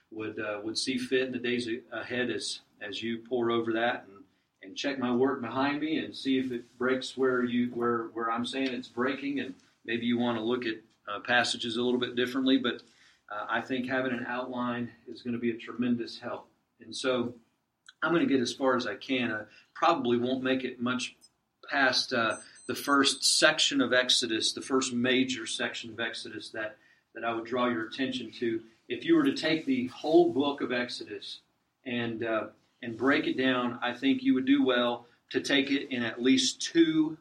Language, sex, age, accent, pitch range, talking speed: English, male, 40-59, American, 120-140 Hz, 210 wpm